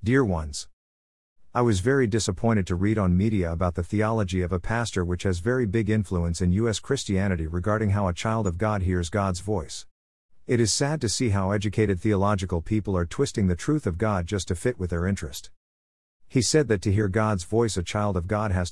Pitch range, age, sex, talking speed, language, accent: 90-110 Hz, 50-69, male, 210 wpm, English, American